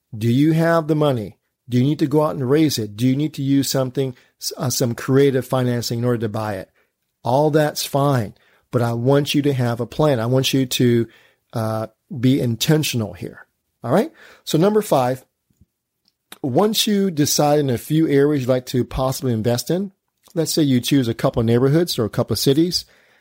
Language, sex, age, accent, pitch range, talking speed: English, male, 40-59, American, 120-145 Hz, 205 wpm